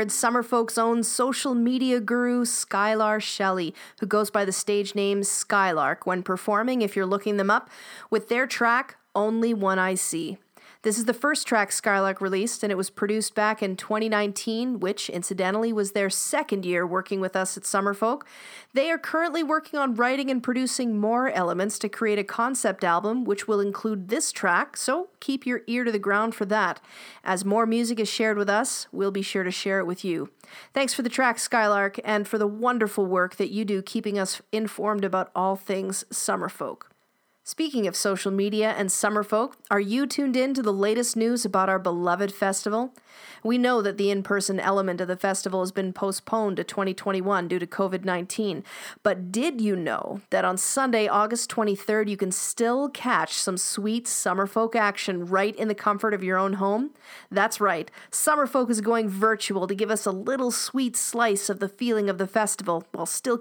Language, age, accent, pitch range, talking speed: English, 40-59, American, 195-235 Hz, 190 wpm